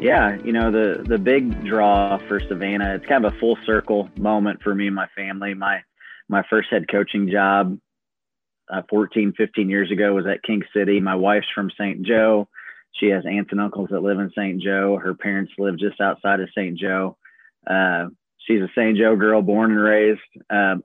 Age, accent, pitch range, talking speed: 20-39, American, 100-110 Hz, 200 wpm